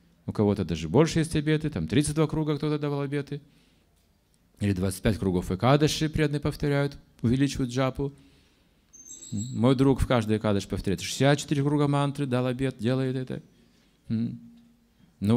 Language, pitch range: Russian, 115-155 Hz